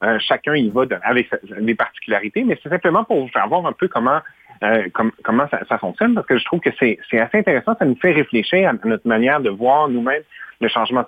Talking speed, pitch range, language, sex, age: 240 wpm, 115-185 Hz, French, male, 40-59